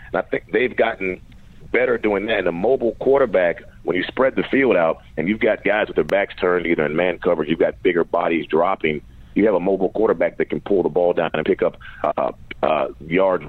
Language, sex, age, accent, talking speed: English, male, 40-59, American, 225 wpm